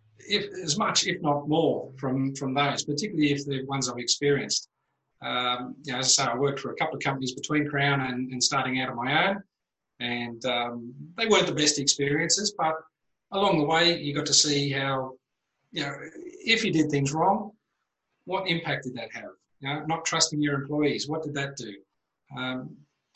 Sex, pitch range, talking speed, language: male, 125-150 Hz, 190 wpm, English